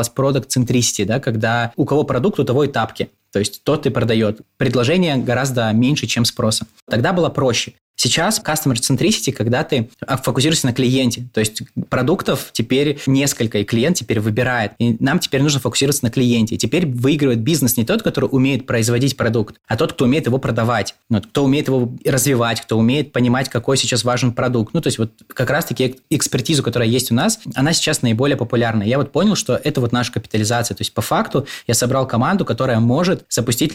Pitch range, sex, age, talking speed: 115-135 Hz, male, 20-39, 195 wpm